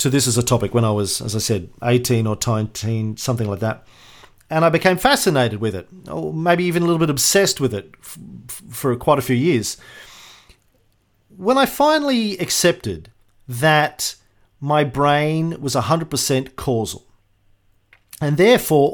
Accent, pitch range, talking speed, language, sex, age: Australian, 115-160 Hz, 155 wpm, English, male, 40-59